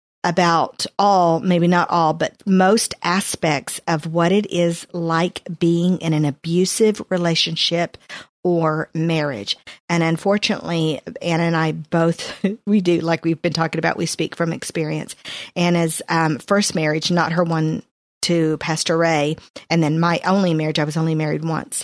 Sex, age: female, 50-69